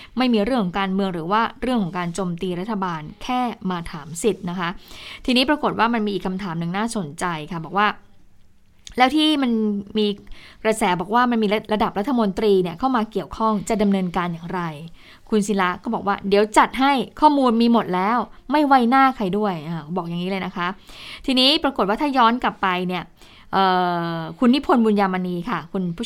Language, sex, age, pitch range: Thai, female, 20-39, 185-245 Hz